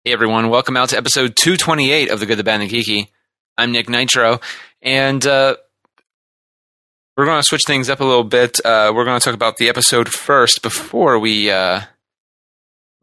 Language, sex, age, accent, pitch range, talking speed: English, male, 30-49, American, 110-130 Hz, 190 wpm